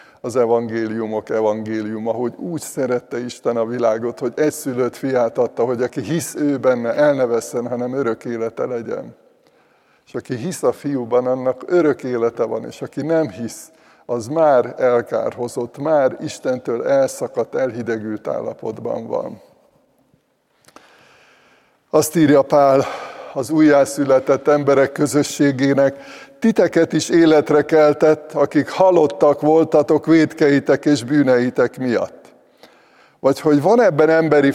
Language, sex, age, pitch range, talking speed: Hungarian, male, 60-79, 125-155 Hz, 120 wpm